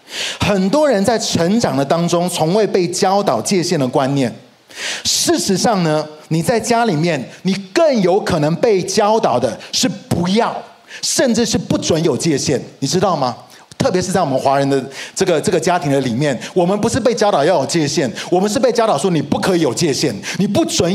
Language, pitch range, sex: Chinese, 155-225 Hz, male